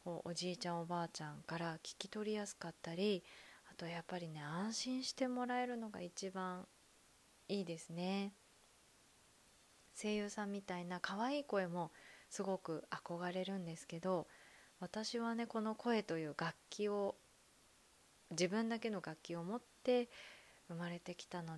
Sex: female